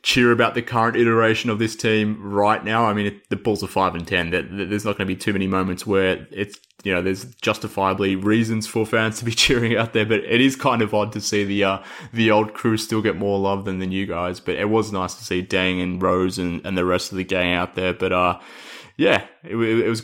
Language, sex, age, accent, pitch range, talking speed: English, male, 20-39, Australian, 95-110 Hz, 265 wpm